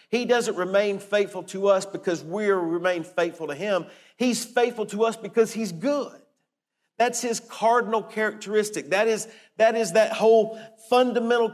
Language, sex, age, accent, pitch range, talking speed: English, male, 50-69, American, 160-215 Hz, 150 wpm